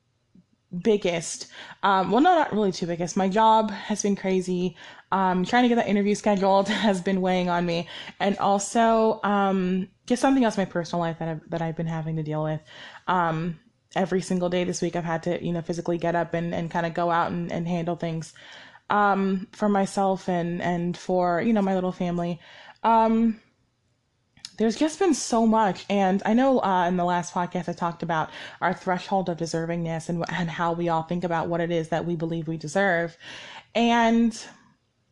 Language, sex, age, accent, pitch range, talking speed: English, female, 20-39, American, 170-210 Hz, 195 wpm